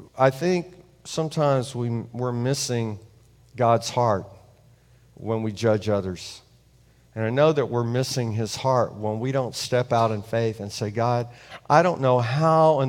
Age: 50-69